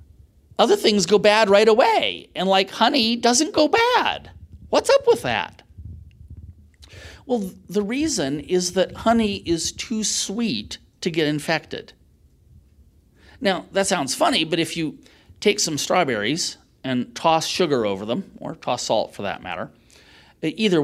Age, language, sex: 40-59, English, male